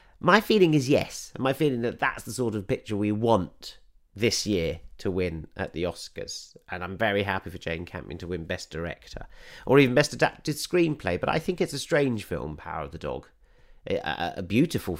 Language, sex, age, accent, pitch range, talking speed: English, male, 40-59, British, 105-145 Hz, 210 wpm